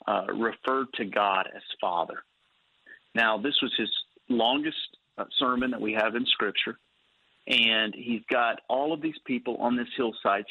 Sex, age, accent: male, 40-59, American